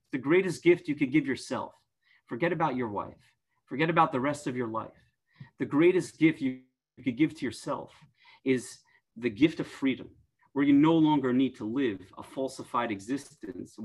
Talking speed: 180 wpm